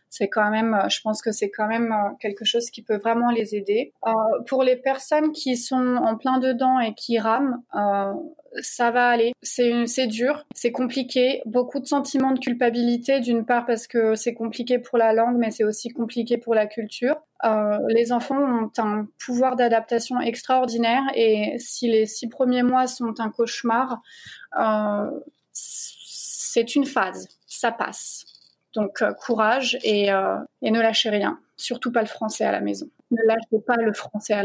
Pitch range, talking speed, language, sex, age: 225-255 Hz, 180 wpm, French, female, 20-39